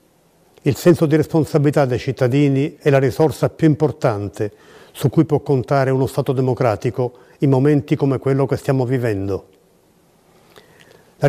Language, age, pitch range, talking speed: Italian, 50-69, 125-150 Hz, 140 wpm